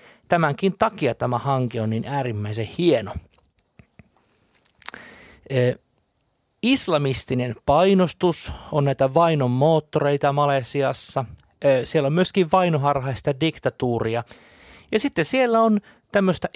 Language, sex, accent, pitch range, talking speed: Finnish, male, native, 115-160 Hz, 100 wpm